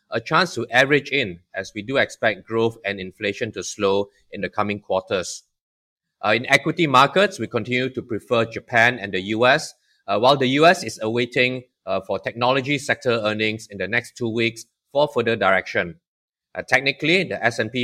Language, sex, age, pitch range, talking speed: English, male, 20-39, 110-130 Hz, 180 wpm